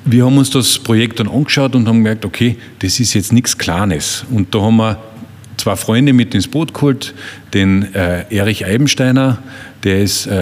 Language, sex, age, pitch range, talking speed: German, male, 40-59, 105-120 Hz, 180 wpm